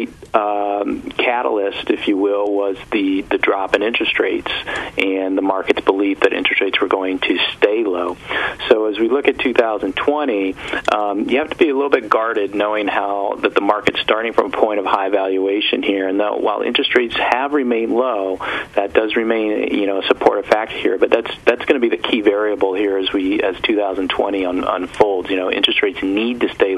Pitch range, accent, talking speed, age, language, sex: 95-140 Hz, American, 205 wpm, 40-59, English, male